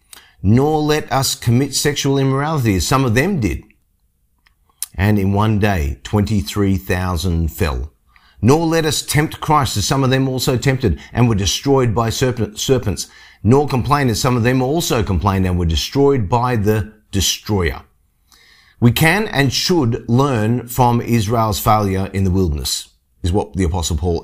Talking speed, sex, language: 155 wpm, male, English